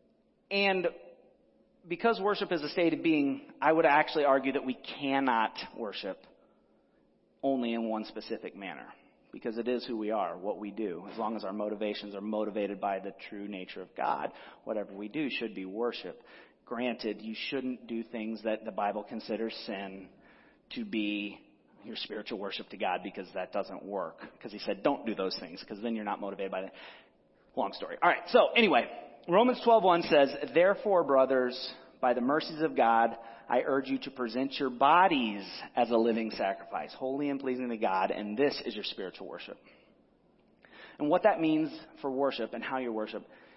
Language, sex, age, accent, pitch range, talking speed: English, male, 40-59, American, 110-140 Hz, 180 wpm